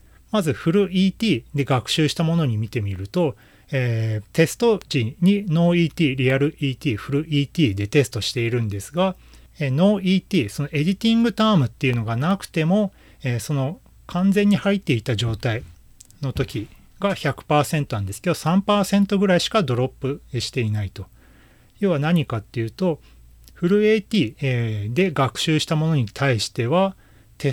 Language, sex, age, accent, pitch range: Japanese, male, 40-59, native, 120-185 Hz